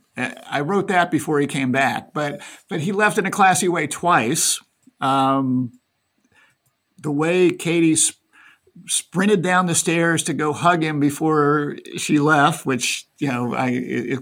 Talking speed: 155 wpm